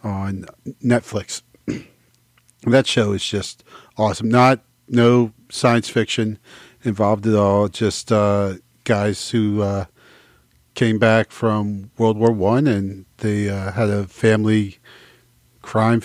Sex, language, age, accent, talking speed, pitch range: male, English, 40-59, American, 120 wpm, 100-120 Hz